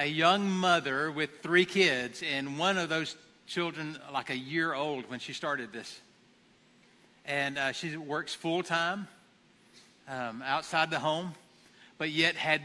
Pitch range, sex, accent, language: 140-170 Hz, male, American, English